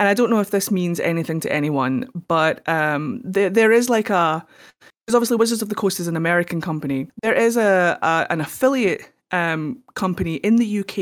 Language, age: English, 30-49